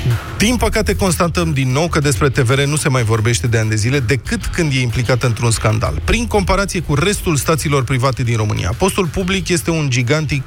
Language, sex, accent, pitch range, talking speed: Romanian, male, native, 120-160 Hz, 200 wpm